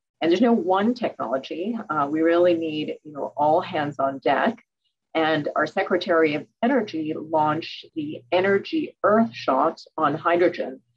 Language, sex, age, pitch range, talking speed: English, female, 40-59, 155-190 Hz, 150 wpm